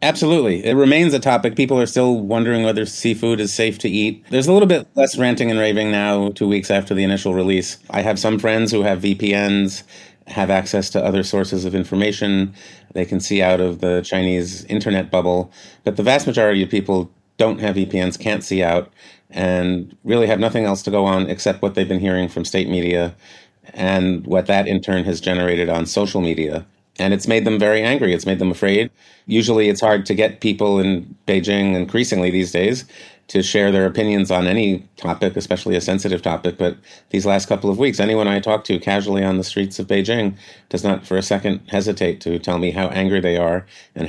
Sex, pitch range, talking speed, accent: male, 90-105 Hz, 210 wpm, American